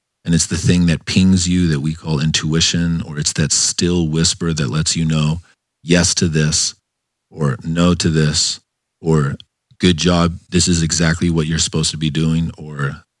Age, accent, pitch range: 40-59, American, 80-95 Hz